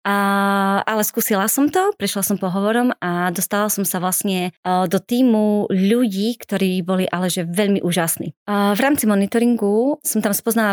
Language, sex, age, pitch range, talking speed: Slovak, female, 20-39, 185-215 Hz, 145 wpm